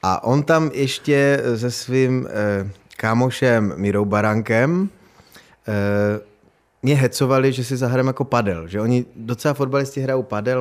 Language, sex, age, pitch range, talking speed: Czech, male, 20-39, 105-125 Hz, 135 wpm